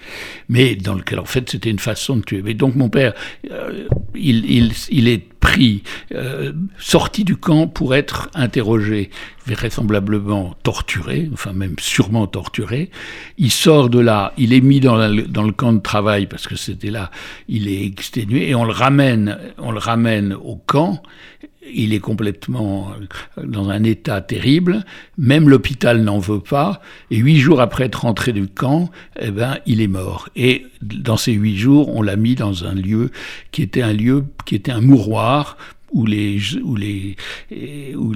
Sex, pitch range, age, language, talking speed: male, 105-135 Hz, 60-79, French, 180 wpm